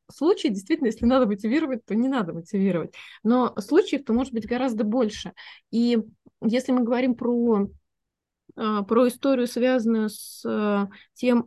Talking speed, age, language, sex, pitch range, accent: 130 wpm, 20-39, Russian, female, 200-255 Hz, native